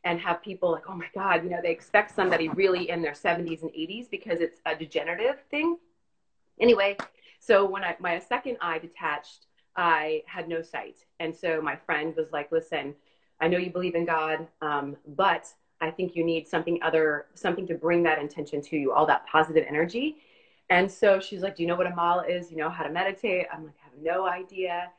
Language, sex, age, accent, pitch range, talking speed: English, female, 30-49, American, 160-190 Hz, 215 wpm